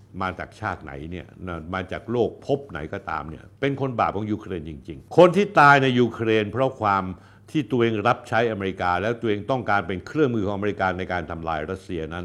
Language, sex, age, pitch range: Thai, male, 70-89, 95-135 Hz